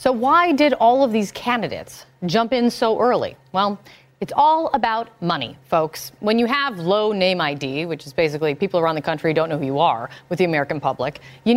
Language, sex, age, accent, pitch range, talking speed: English, female, 30-49, American, 175-255 Hz, 210 wpm